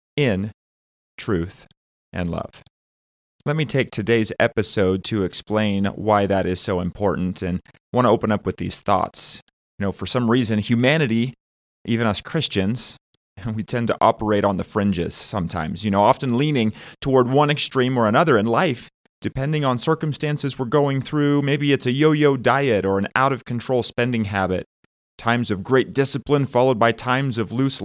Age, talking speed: 30-49, 165 wpm